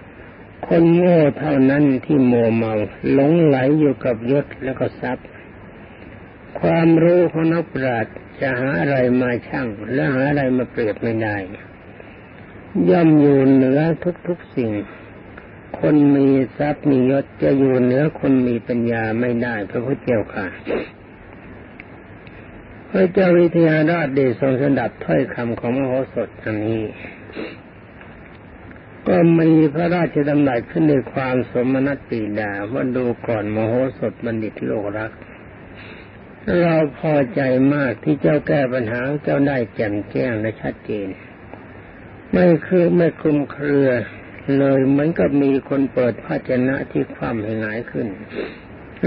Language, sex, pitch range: Thai, male, 110-145 Hz